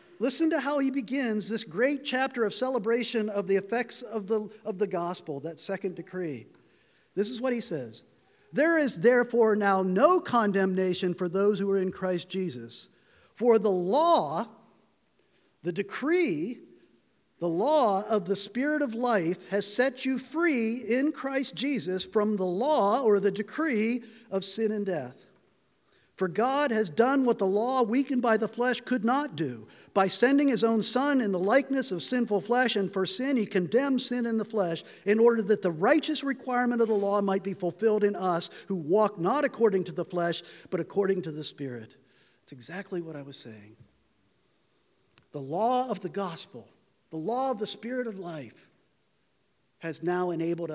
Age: 50-69